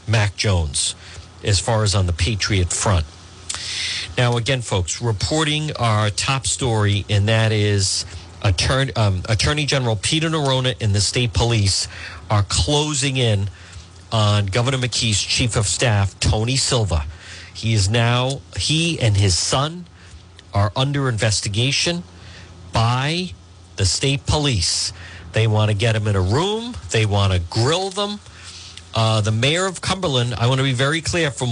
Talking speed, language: 150 wpm, English